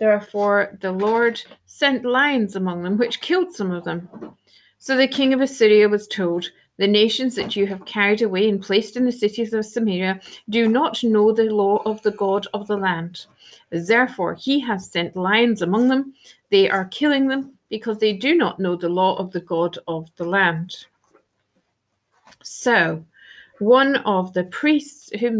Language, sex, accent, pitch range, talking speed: English, female, British, 190-265 Hz, 175 wpm